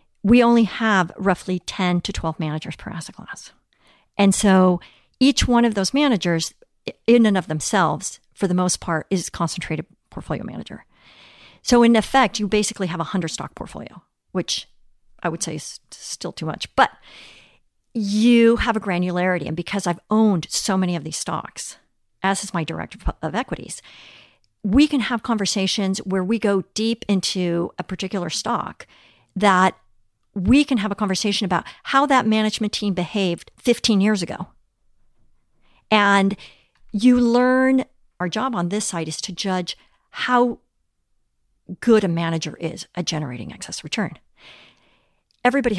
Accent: American